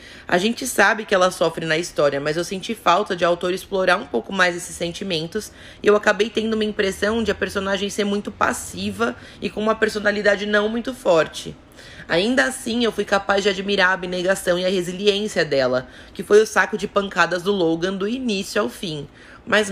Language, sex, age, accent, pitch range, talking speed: Portuguese, female, 20-39, Brazilian, 180-215 Hz, 200 wpm